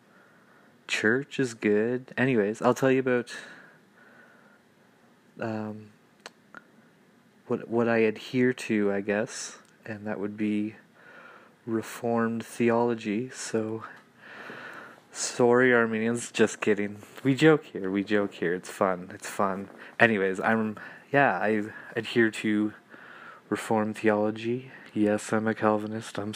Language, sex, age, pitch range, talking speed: English, male, 20-39, 105-135 Hz, 115 wpm